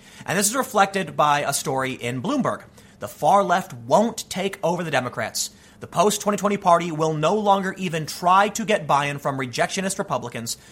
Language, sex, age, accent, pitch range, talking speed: English, male, 30-49, American, 140-200 Hz, 175 wpm